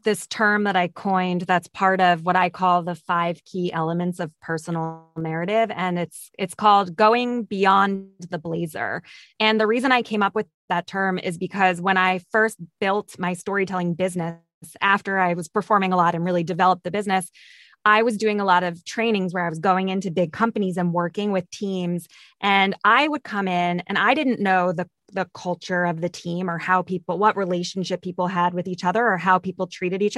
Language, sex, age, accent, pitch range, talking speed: English, female, 20-39, American, 180-215 Hz, 205 wpm